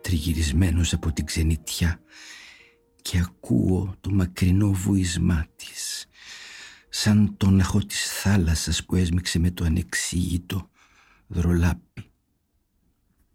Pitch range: 85-95 Hz